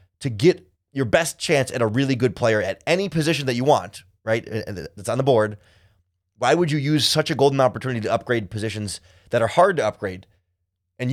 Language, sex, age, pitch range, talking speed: English, male, 30-49, 100-140 Hz, 205 wpm